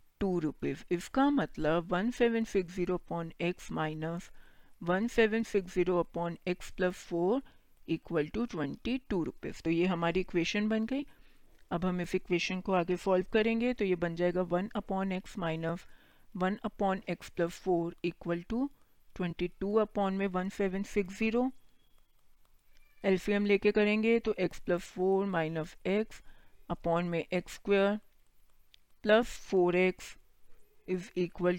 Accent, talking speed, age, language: native, 130 wpm, 50-69, Hindi